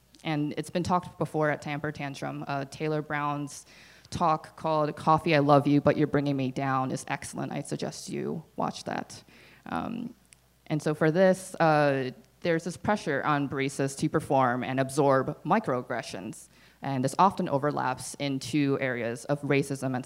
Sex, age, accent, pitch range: female, 20-39, American, 135-165 Hz